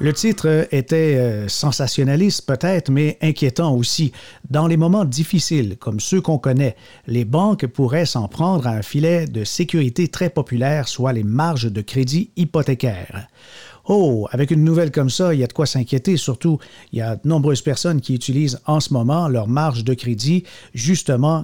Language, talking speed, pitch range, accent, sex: French, 175 wpm, 125-160 Hz, Canadian, male